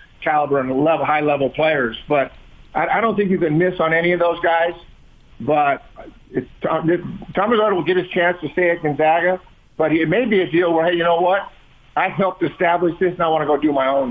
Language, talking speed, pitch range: English, 235 wpm, 145-170 Hz